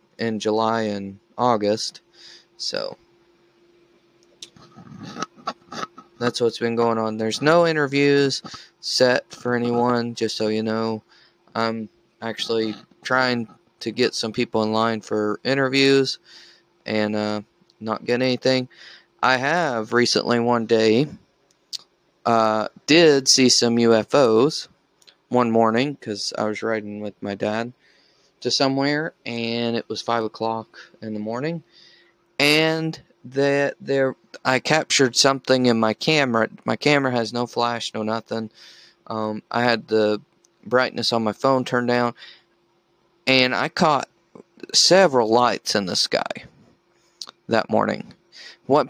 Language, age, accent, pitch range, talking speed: English, 20-39, American, 110-135 Hz, 125 wpm